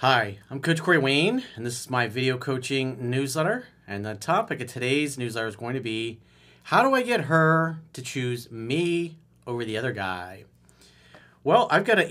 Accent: American